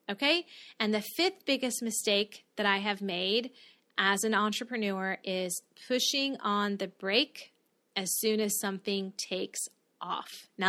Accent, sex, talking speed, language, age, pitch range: American, female, 140 wpm, English, 20-39, 205-250 Hz